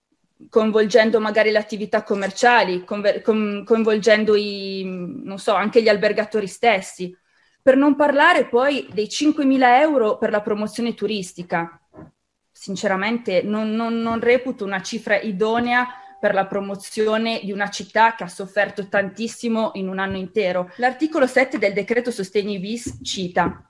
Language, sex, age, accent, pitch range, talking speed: Italian, female, 20-39, native, 205-245 Hz, 140 wpm